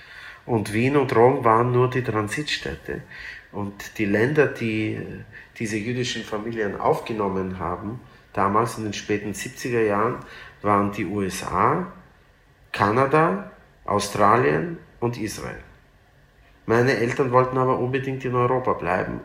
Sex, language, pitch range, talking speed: male, German, 105-125 Hz, 120 wpm